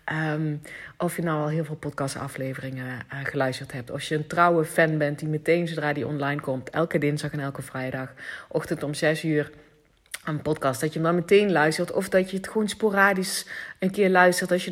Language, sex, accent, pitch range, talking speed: Dutch, female, Dutch, 145-185 Hz, 210 wpm